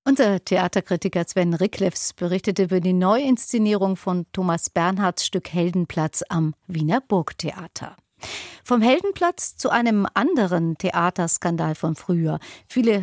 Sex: female